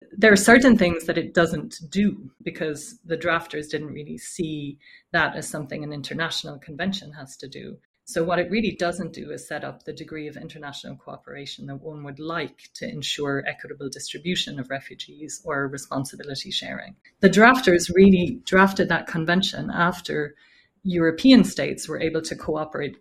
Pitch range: 145-185 Hz